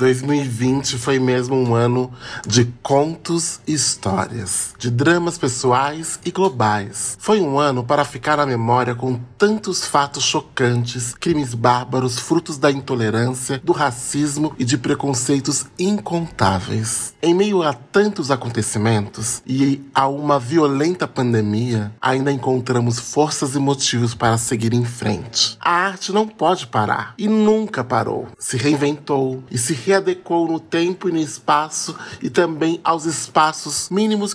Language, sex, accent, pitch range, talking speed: Portuguese, male, Brazilian, 125-170 Hz, 135 wpm